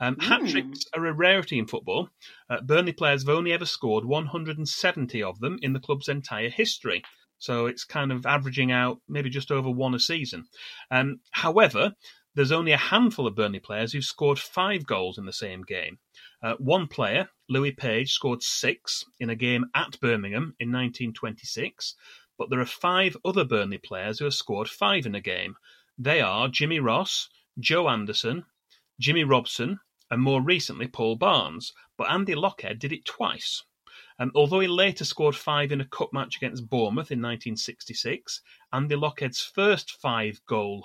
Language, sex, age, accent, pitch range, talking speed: English, male, 30-49, British, 120-150 Hz, 170 wpm